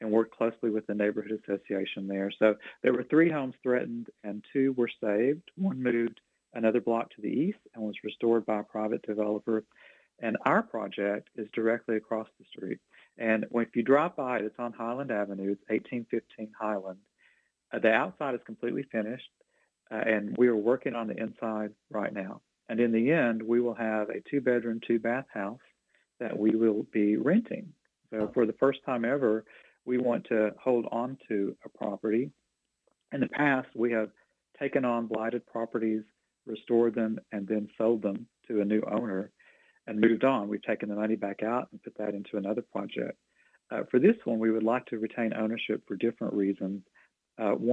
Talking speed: 185 wpm